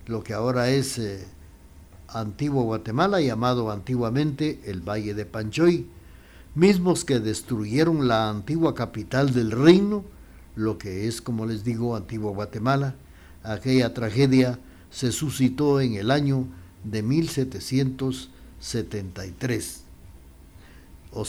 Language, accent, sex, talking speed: Spanish, Mexican, male, 105 wpm